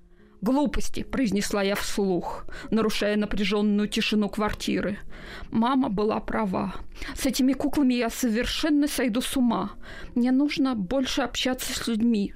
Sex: female